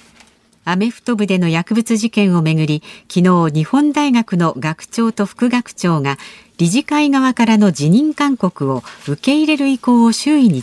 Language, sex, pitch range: Japanese, female, 170-235 Hz